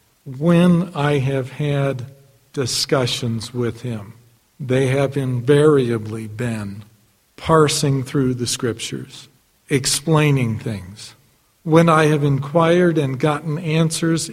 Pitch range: 120-150 Hz